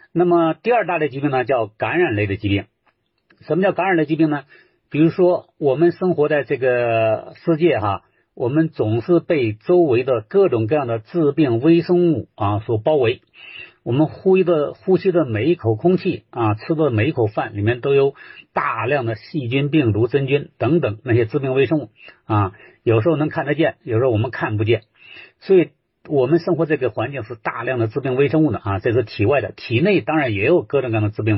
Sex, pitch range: male, 110-165 Hz